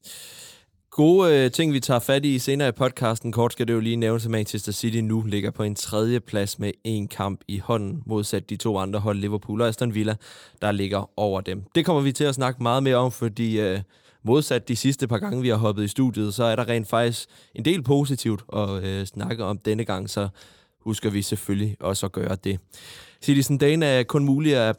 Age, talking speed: 20-39, 225 wpm